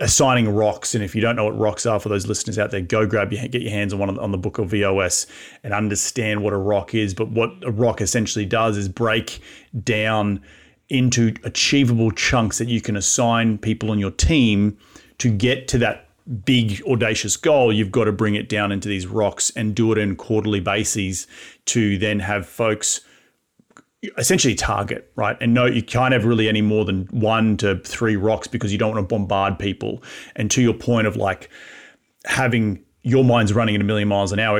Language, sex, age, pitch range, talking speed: English, male, 30-49, 105-115 Hz, 205 wpm